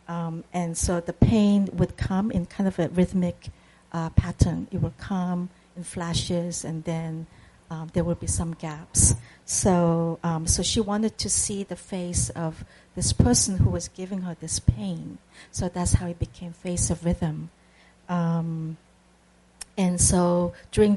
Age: 50-69